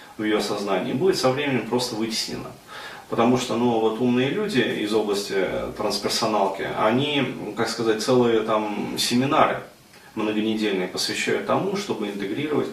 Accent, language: native, Russian